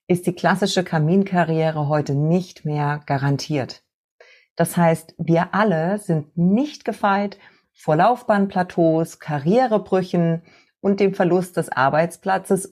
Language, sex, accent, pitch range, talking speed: German, female, German, 150-195 Hz, 110 wpm